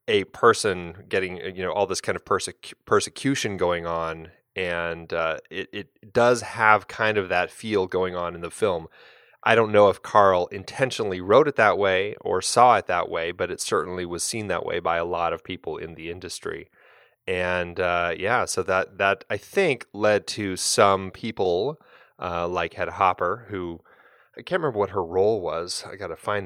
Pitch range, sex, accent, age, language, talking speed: 85-120 Hz, male, American, 30-49, English, 195 wpm